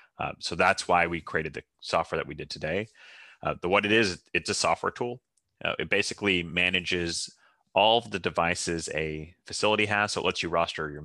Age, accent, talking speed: 30-49, American, 205 wpm